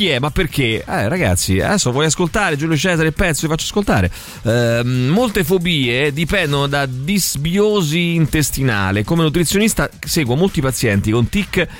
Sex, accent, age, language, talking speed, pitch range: male, native, 30-49, Italian, 145 wpm, 115-165 Hz